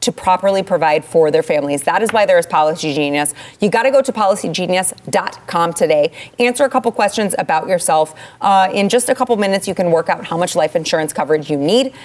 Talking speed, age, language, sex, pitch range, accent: 215 wpm, 30-49, English, female, 165-215 Hz, American